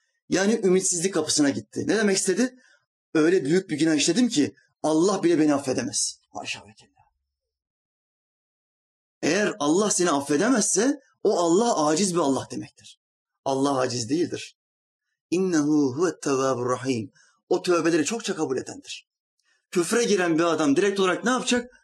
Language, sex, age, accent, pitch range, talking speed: Turkish, male, 30-49, native, 165-225 Hz, 125 wpm